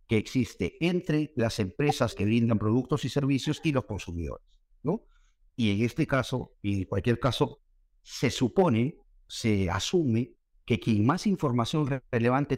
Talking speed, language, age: 150 wpm, Spanish, 50-69